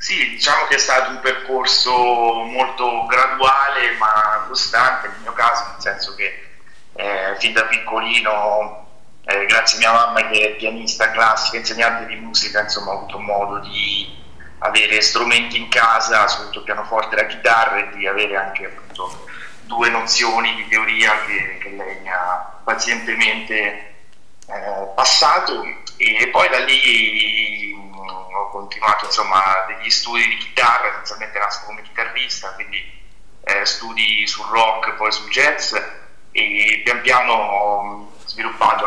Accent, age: native, 30-49